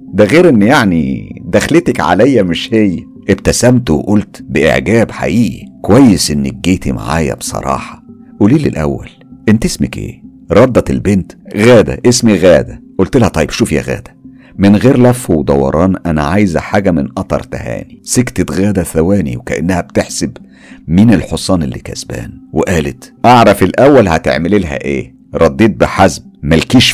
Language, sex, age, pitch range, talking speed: Arabic, male, 50-69, 75-110 Hz, 135 wpm